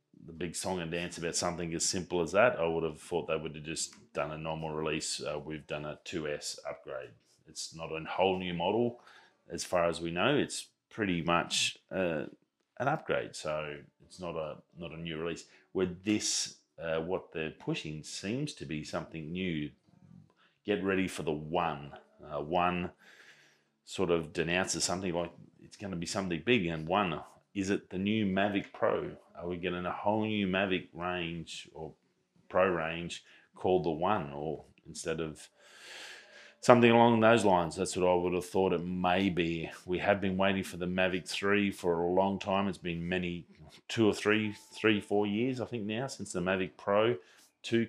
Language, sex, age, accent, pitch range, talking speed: English, male, 30-49, Australian, 80-100 Hz, 190 wpm